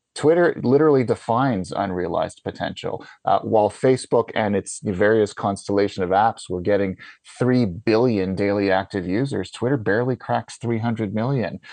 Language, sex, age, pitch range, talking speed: English, male, 30-49, 100-125 Hz, 135 wpm